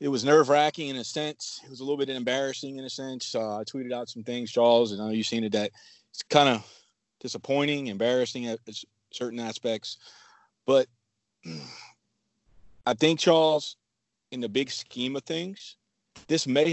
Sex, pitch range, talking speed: male, 115-140 Hz, 180 wpm